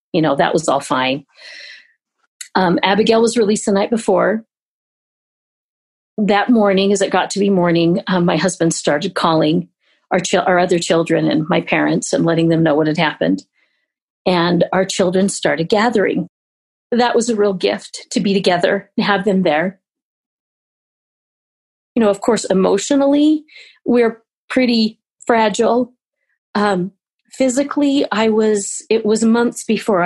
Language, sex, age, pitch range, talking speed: English, female, 40-59, 180-225 Hz, 145 wpm